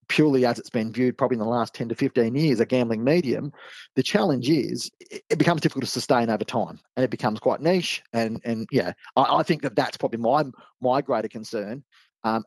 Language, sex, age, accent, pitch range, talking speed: English, male, 40-59, Australian, 115-135 Hz, 215 wpm